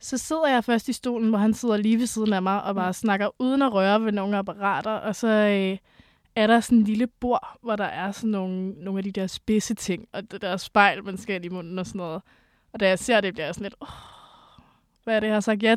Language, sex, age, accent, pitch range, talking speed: Danish, female, 20-39, native, 200-245 Hz, 270 wpm